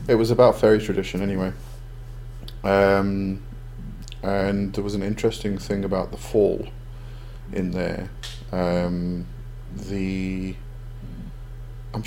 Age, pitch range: 30-49, 95-120 Hz